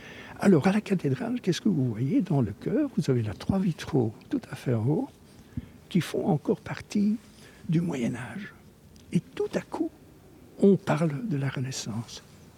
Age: 60-79